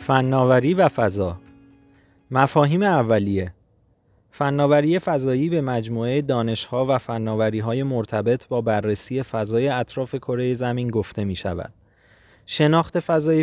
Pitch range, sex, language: 115-140 Hz, male, Persian